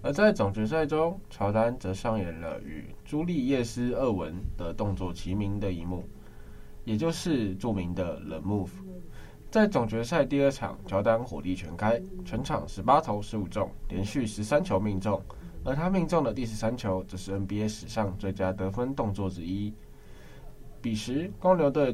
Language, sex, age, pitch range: Chinese, male, 10-29, 95-140 Hz